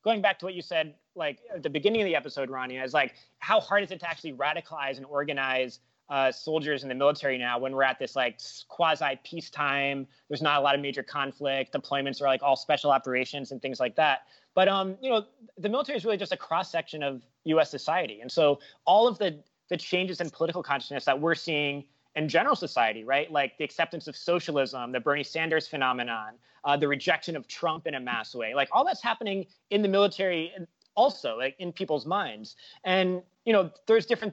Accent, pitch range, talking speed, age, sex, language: American, 140-185 Hz, 215 wpm, 20-39, male, English